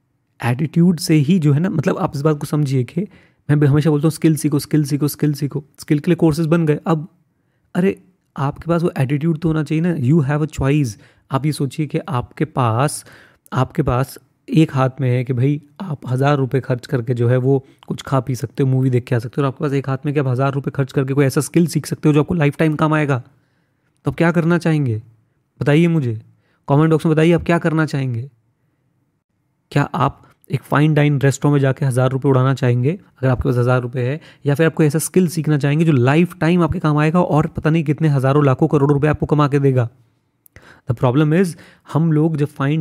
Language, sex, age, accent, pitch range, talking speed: Hindi, male, 30-49, native, 135-155 Hz, 225 wpm